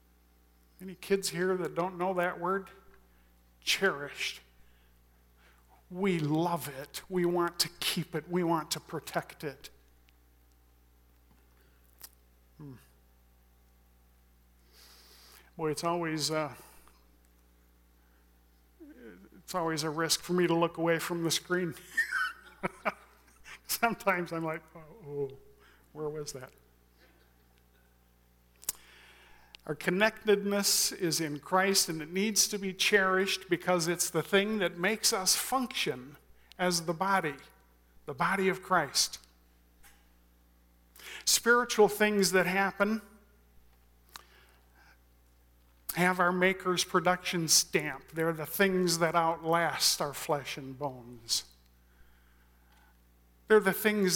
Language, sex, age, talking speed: English, male, 50-69, 100 wpm